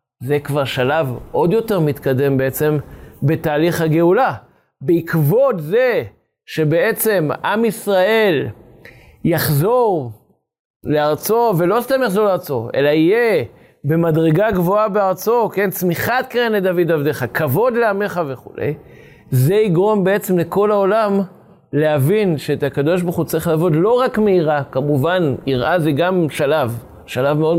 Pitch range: 145-200 Hz